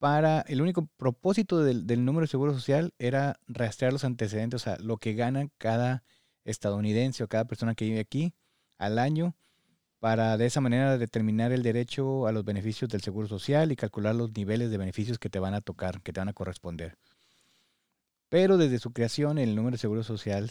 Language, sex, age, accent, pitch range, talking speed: Spanish, male, 30-49, Mexican, 105-130 Hz, 195 wpm